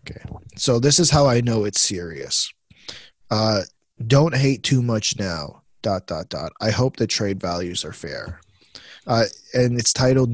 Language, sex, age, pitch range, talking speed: English, male, 20-39, 100-130 Hz, 170 wpm